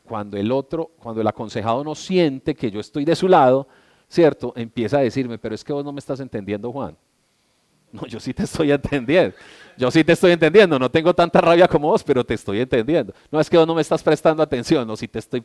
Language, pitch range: Spanish, 115-155 Hz